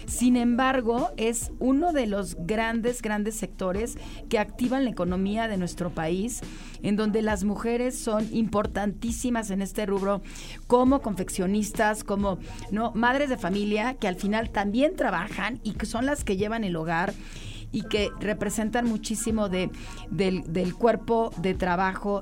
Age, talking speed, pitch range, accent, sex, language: 40-59, 150 wpm, 190-230 Hz, Mexican, female, Spanish